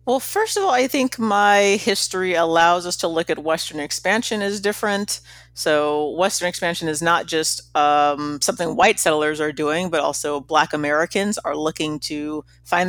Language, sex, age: English, female, 40-59